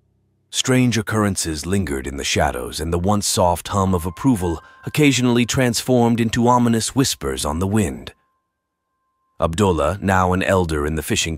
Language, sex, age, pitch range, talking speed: Malay, male, 30-49, 80-115 Hz, 150 wpm